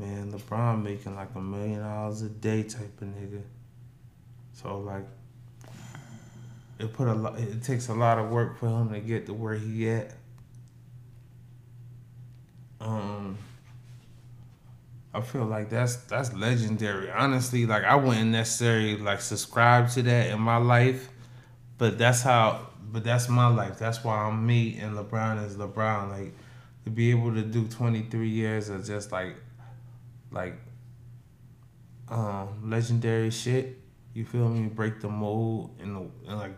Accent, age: American, 20-39